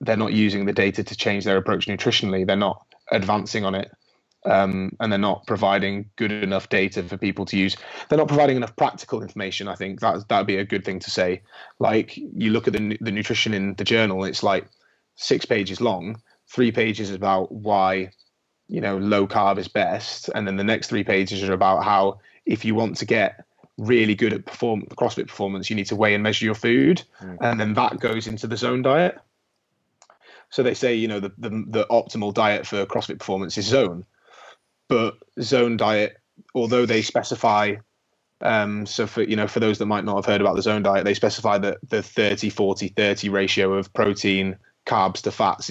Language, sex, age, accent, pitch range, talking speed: English, male, 20-39, British, 95-115 Hz, 200 wpm